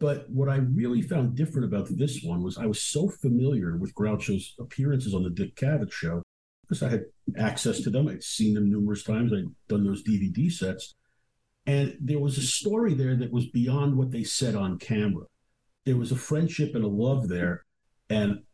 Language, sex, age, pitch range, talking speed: English, male, 50-69, 105-135 Hz, 195 wpm